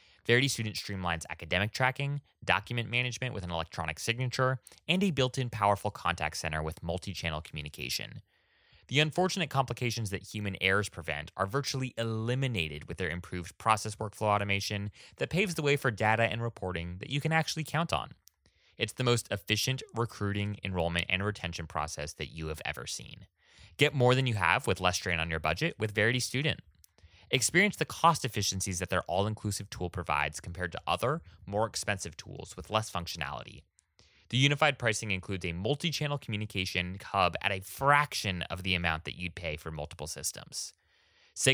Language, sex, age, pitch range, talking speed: English, male, 20-39, 85-125 Hz, 170 wpm